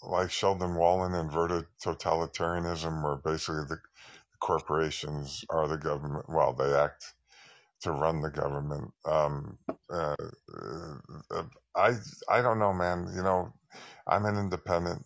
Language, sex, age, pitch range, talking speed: English, male, 50-69, 80-90 Hz, 125 wpm